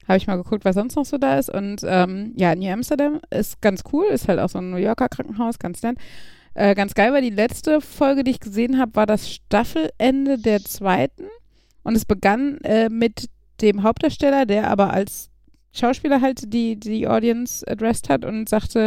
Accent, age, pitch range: German, 30-49, 205-260 Hz